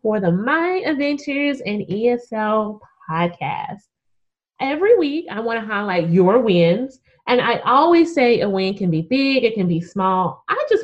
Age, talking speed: 20-39, 160 wpm